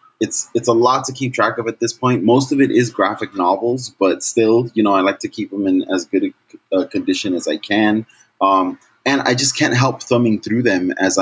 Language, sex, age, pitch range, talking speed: English, male, 20-39, 95-150 Hz, 245 wpm